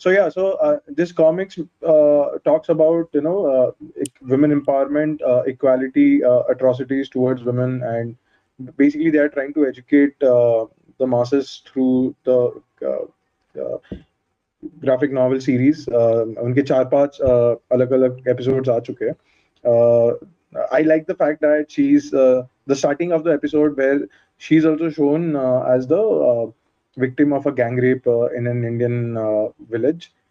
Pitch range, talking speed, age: 115-145 Hz, 140 wpm, 20-39